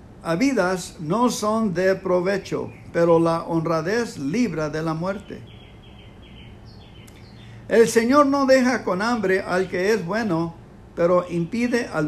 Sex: male